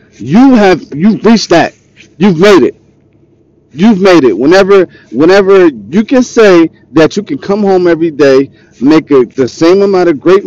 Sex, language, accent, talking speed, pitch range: male, English, American, 170 wpm, 115-175 Hz